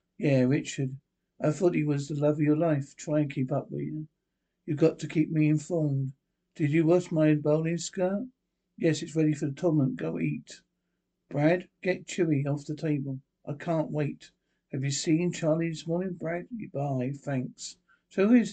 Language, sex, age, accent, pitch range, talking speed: English, male, 60-79, British, 140-170 Hz, 190 wpm